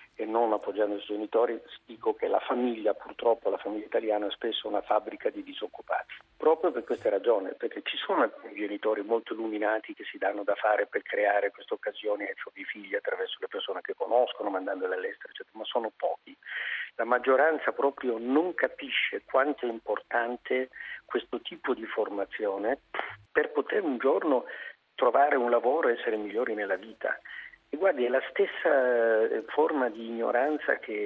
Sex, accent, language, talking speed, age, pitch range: male, native, Italian, 160 wpm, 50-69, 115-180 Hz